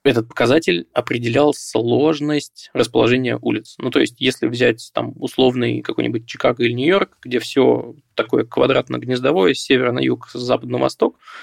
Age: 20-39